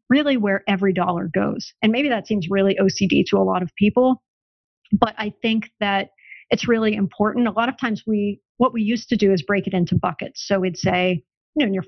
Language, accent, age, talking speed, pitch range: English, American, 40-59, 225 wpm, 190-225 Hz